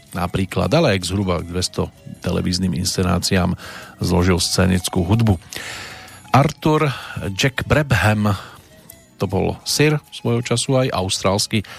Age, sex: 40-59, male